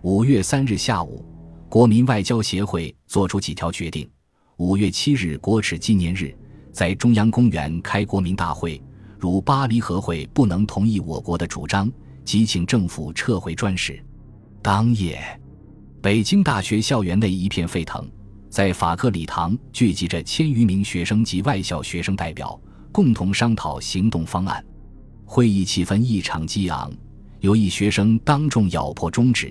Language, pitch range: Chinese, 90-115 Hz